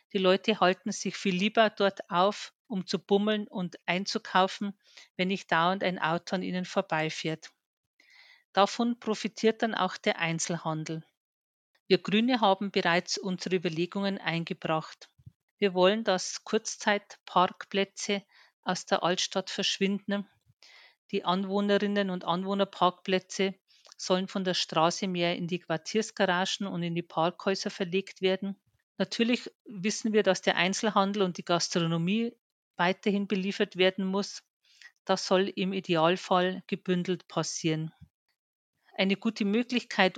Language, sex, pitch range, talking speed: German, female, 180-205 Hz, 120 wpm